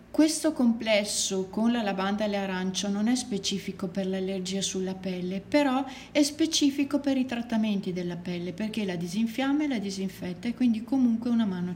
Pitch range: 185-230 Hz